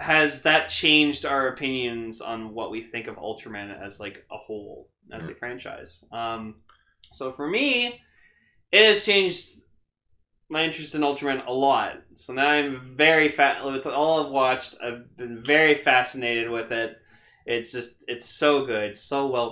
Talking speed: 165 wpm